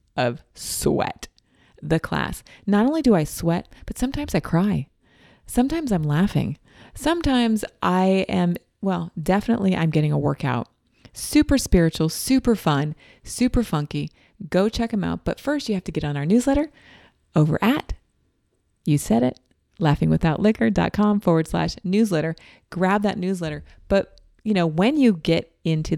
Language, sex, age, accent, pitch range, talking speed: English, female, 30-49, American, 160-220 Hz, 145 wpm